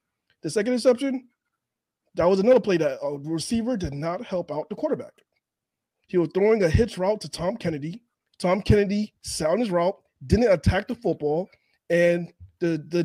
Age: 20-39